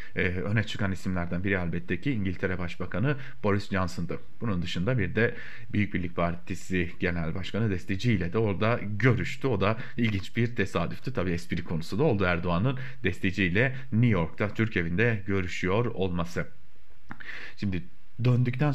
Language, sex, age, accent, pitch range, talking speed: German, male, 40-59, Turkish, 90-120 Hz, 145 wpm